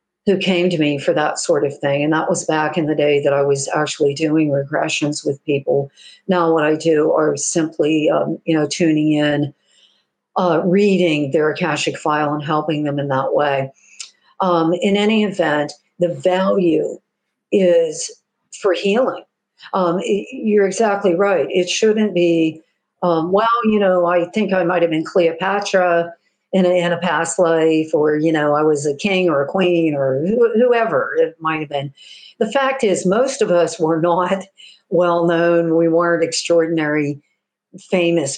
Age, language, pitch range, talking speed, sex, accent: 50-69, English, 155-200 Hz, 170 wpm, female, American